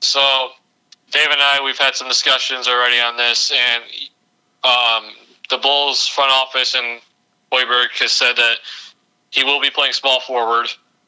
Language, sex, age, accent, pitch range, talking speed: English, male, 20-39, American, 120-140 Hz, 145 wpm